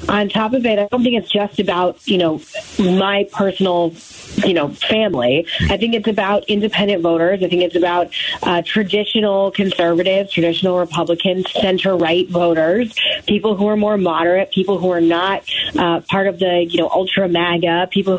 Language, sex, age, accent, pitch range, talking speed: English, female, 30-49, American, 175-215 Hz, 170 wpm